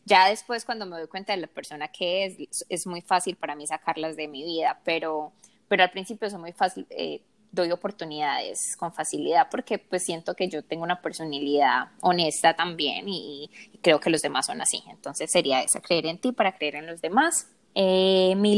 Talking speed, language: 205 wpm, Spanish